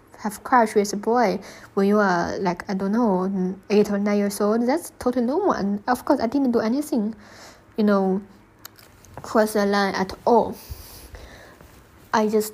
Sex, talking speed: female, 170 wpm